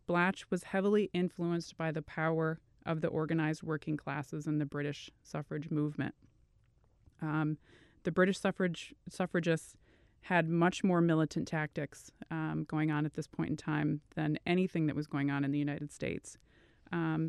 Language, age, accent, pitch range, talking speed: English, 20-39, American, 150-175 Hz, 160 wpm